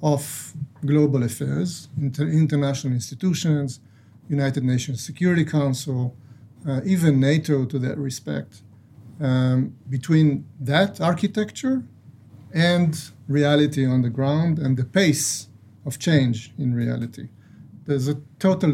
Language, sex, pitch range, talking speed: English, male, 125-155 Hz, 110 wpm